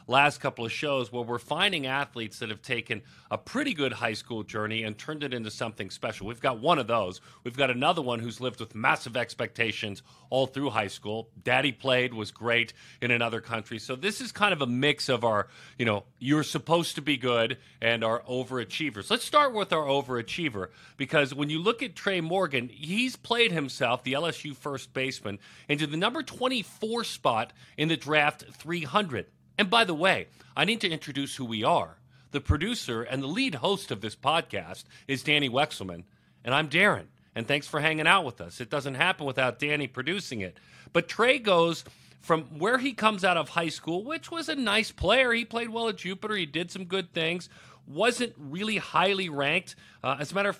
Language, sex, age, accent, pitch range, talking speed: English, male, 40-59, American, 125-195 Hz, 205 wpm